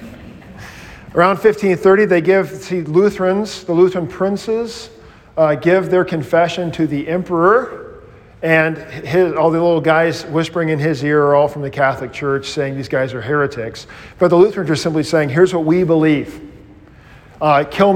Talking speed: 165 wpm